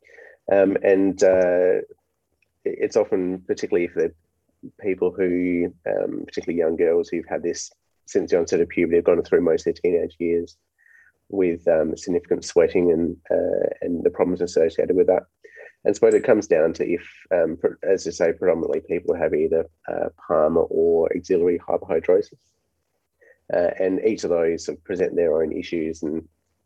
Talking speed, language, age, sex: 160 wpm, English, 30-49, male